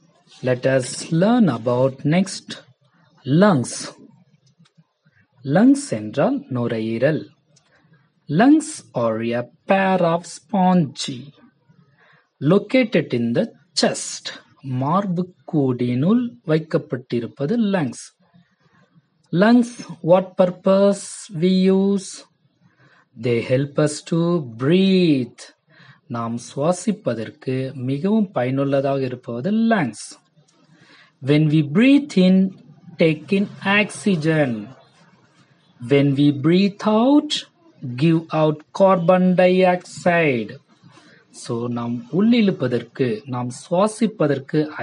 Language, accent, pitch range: Tamil, native, 135-190 Hz